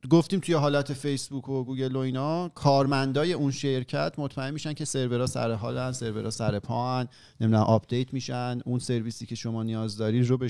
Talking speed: 185 wpm